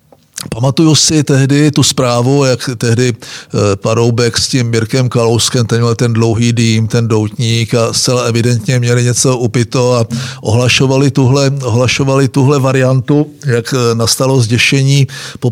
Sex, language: male, Czech